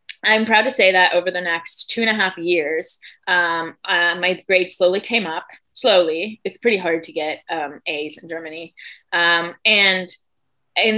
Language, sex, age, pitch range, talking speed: English, female, 20-39, 165-200 Hz, 180 wpm